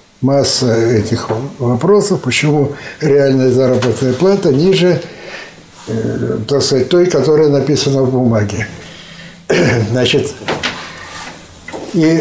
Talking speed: 80 wpm